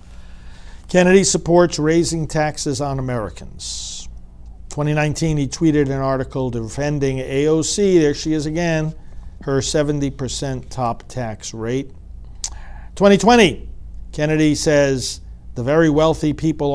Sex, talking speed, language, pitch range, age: male, 105 wpm, English, 115-160 Hz, 50-69